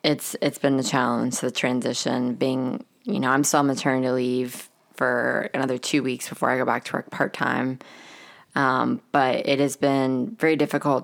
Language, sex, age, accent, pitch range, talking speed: English, female, 20-39, American, 135-150 Hz, 180 wpm